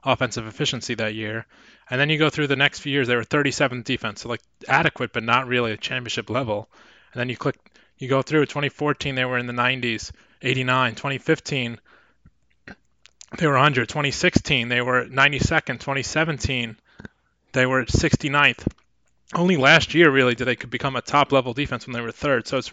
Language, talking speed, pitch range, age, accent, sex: English, 185 wpm, 120-140 Hz, 20-39, American, male